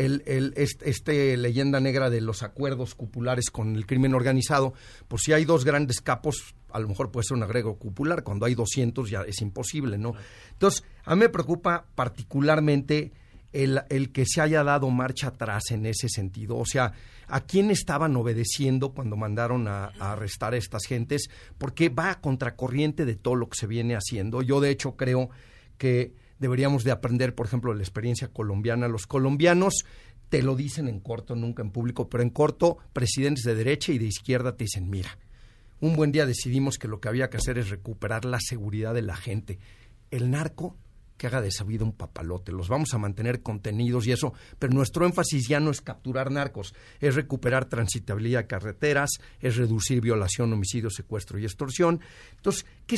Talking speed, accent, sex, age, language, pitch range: 190 wpm, Mexican, male, 50-69, Spanish, 115-140 Hz